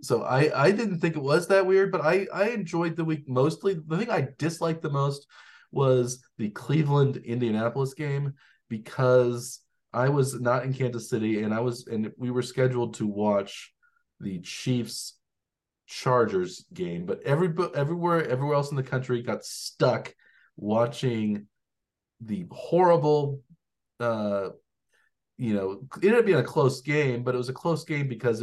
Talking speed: 165 wpm